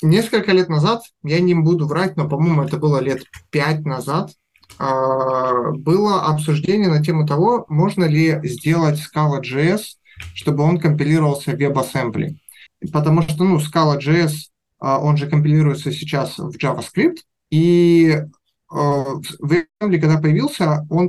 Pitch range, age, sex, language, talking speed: 145-170 Hz, 20-39, male, Russian, 125 wpm